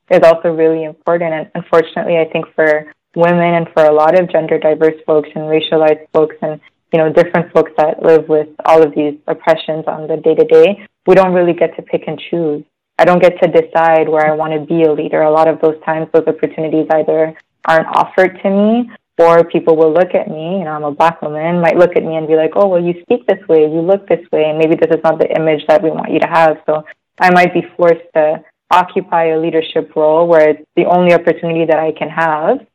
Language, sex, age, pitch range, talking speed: English, female, 20-39, 160-175 Hz, 235 wpm